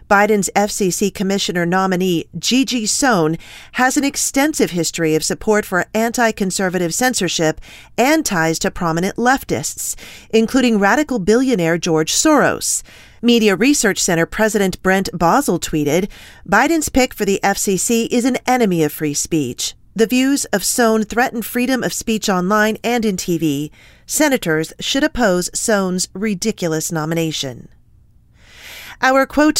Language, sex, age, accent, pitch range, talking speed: English, female, 40-59, American, 170-235 Hz, 130 wpm